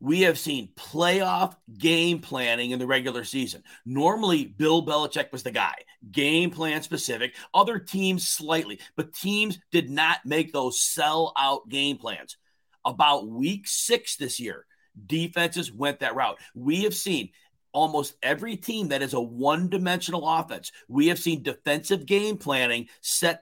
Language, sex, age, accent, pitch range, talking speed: English, male, 40-59, American, 140-180 Hz, 150 wpm